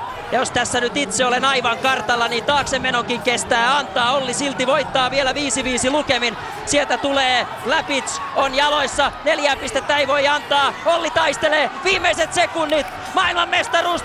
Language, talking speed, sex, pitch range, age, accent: Finnish, 145 wpm, male, 235-285 Hz, 30-49, native